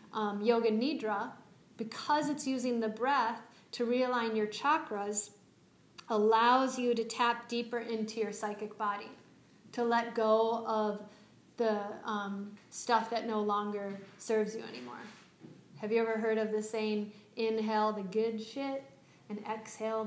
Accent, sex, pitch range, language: American, female, 215-245 Hz, English